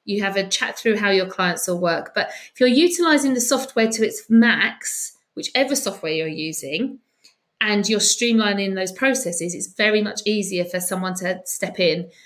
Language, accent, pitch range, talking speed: English, British, 190-240 Hz, 180 wpm